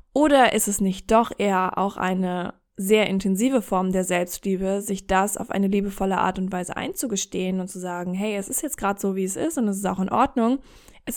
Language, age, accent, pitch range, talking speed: German, 20-39, German, 190-225 Hz, 220 wpm